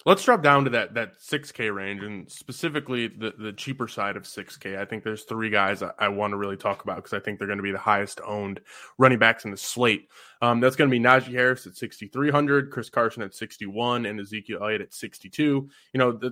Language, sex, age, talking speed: English, male, 20-39, 235 wpm